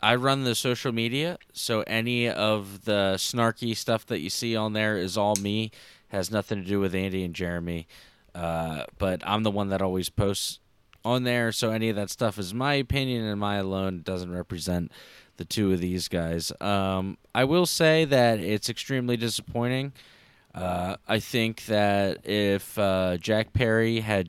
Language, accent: English, American